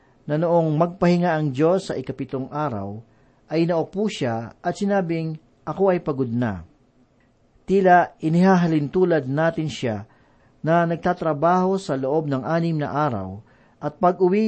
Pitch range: 130-175 Hz